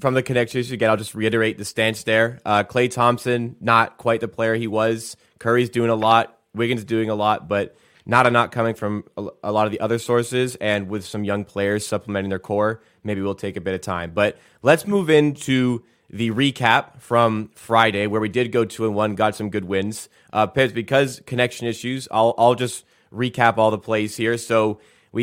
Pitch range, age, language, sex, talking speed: 110-130 Hz, 20-39, English, male, 210 wpm